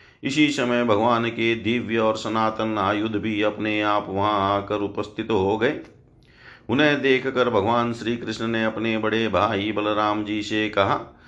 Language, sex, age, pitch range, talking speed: Hindi, male, 50-69, 105-125 Hz, 155 wpm